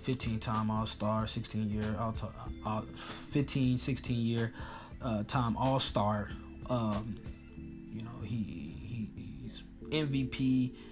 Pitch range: 110-130 Hz